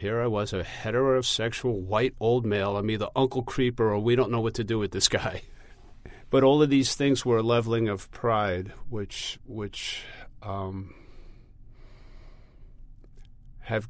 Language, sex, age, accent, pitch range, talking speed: English, male, 50-69, American, 100-120 Hz, 155 wpm